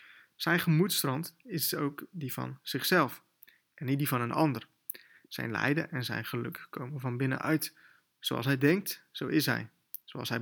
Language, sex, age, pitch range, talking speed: Dutch, male, 20-39, 130-165 Hz, 165 wpm